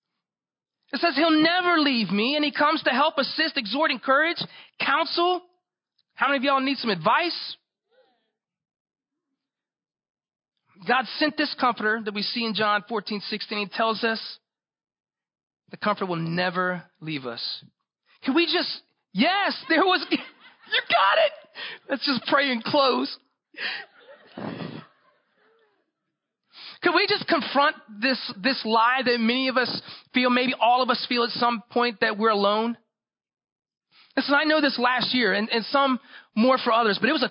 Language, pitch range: English, 225-285 Hz